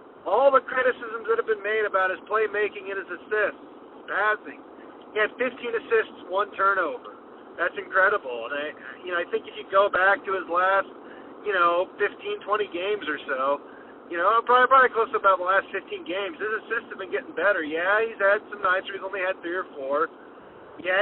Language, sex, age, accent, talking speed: English, male, 40-59, American, 205 wpm